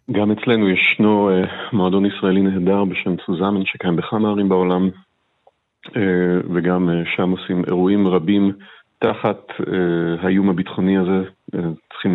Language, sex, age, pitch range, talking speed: Hebrew, male, 40-59, 90-105 Hz, 110 wpm